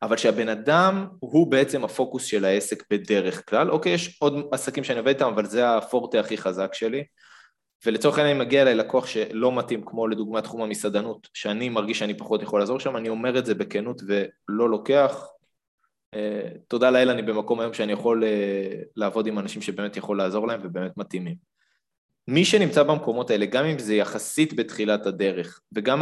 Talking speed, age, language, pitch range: 175 wpm, 20-39, Hebrew, 105-135 Hz